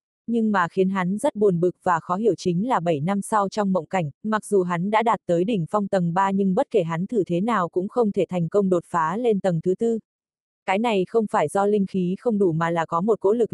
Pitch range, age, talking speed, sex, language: 180-220 Hz, 20-39, 270 wpm, female, Vietnamese